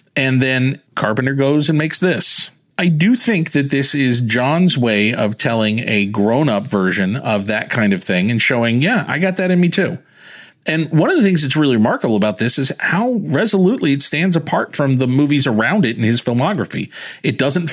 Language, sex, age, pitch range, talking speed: English, male, 40-59, 120-165 Hz, 205 wpm